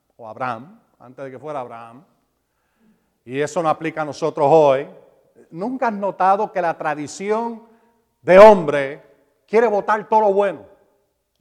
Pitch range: 180-270 Hz